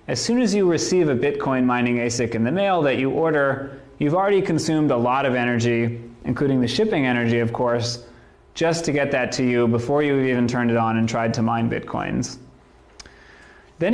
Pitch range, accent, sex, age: 120-145 Hz, American, male, 30-49